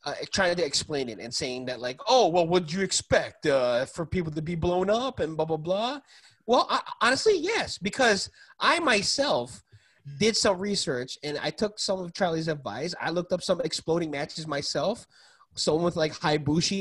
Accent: American